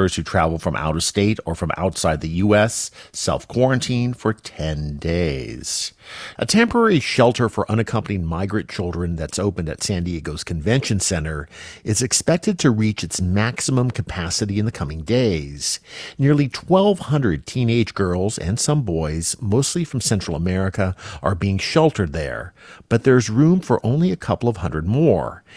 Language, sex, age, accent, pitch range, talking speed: English, male, 50-69, American, 85-115 Hz, 155 wpm